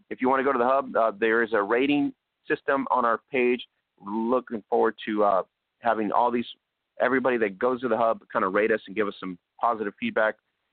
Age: 30-49